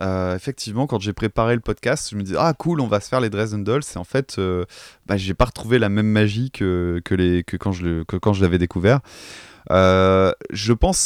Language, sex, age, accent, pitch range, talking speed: French, male, 20-39, French, 95-130 Hz, 245 wpm